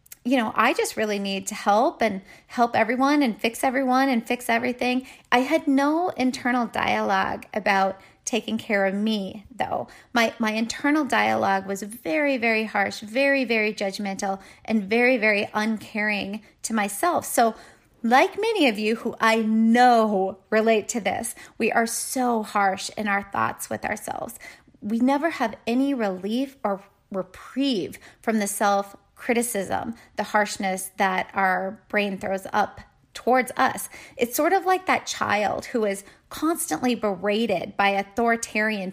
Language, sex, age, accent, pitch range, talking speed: English, female, 30-49, American, 210-260 Hz, 150 wpm